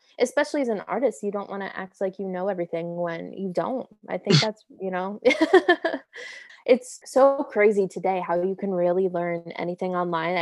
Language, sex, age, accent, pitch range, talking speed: English, female, 20-39, American, 185-250 Hz, 185 wpm